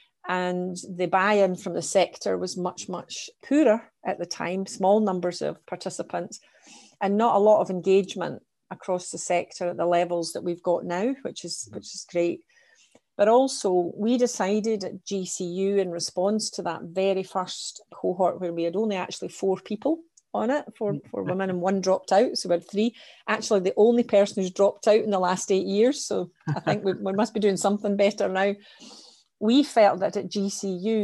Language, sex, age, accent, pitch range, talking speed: English, female, 40-59, British, 180-215 Hz, 190 wpm